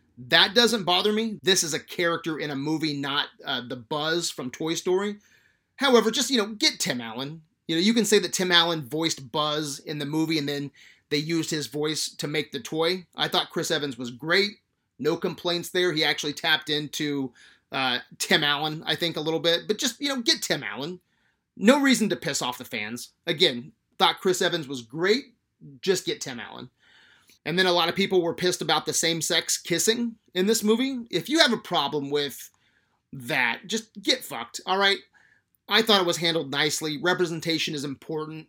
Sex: male